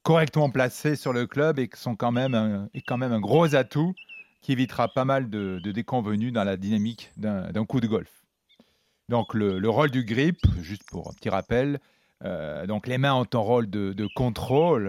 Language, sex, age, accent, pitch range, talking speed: French, male, 40-59, French, 110-140 Hz, 210 wpm